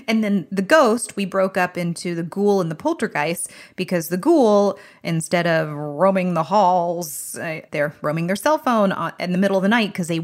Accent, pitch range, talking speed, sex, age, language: American, 165-210 Hz, 200 wpm, female, 30-49, English